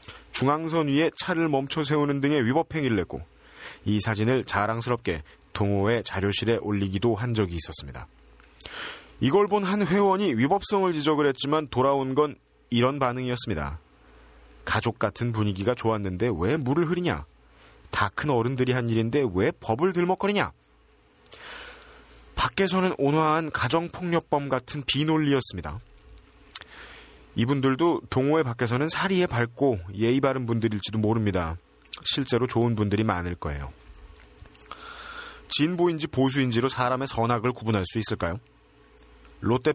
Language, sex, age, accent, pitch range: Korean, male, 30-49, native, 105-155 Hz